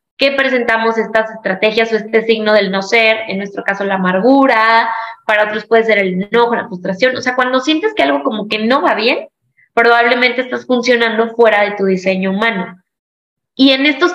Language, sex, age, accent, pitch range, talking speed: Spanish, female, 20-39, Mexican, 225-270 Hz, 190 wpm